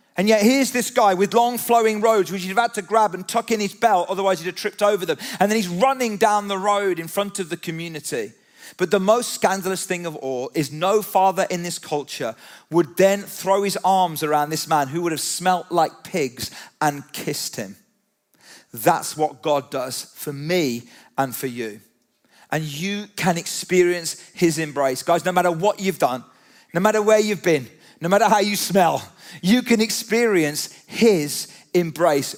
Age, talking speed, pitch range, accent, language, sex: 40-59, 195 wpm, 160-210 Hz, British, English, male